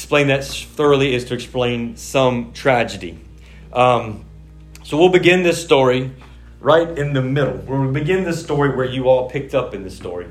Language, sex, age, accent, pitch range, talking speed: English, male, 40-59, American, 105-135 Hz, 175 wpm